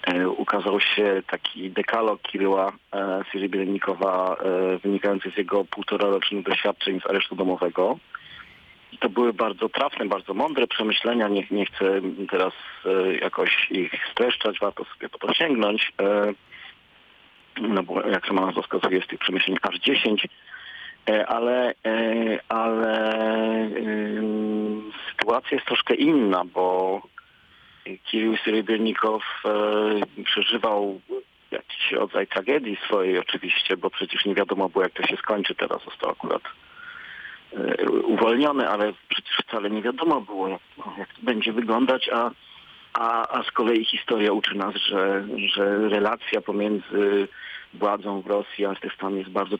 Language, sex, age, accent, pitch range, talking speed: Polish, male, 40-59, native, 95-110 Hz, 125 wpm